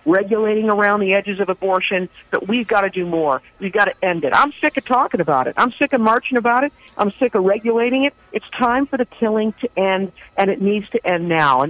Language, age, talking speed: English, 50-69, 245 wpm